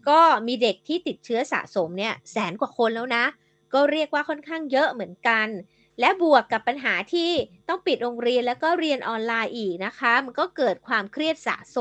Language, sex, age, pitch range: Thai, female, 20-39, 215-295 Hz